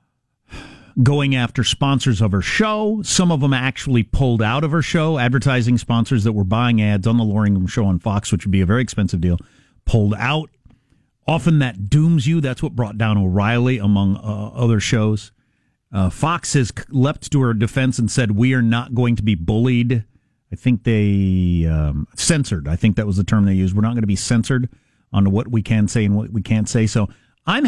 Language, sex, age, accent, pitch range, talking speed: English, male, 50-69, American, 105-140 Hz, 210 wpm